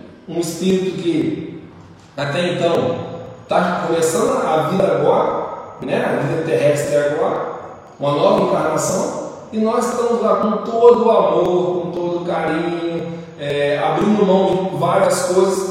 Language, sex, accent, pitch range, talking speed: Portuguese, male, Brazilian, 150-190 Hz, 135 wpm